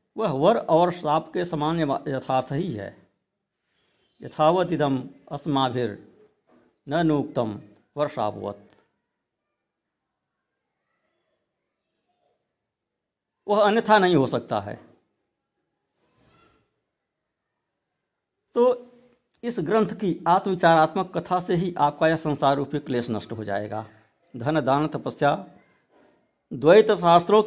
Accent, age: native, 50-69